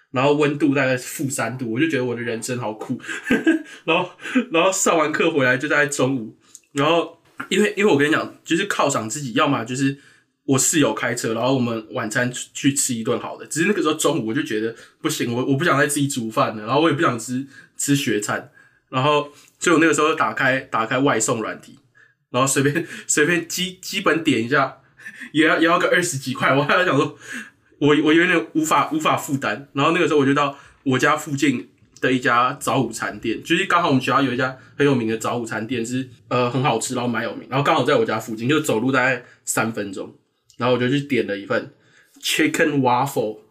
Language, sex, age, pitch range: Chinese, male, 20-39, 125-160 Hz